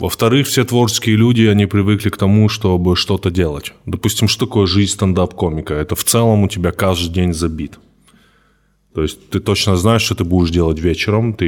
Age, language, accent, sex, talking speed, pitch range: 20-39, Russian, native, male, 185 wpm, 85-105 Hz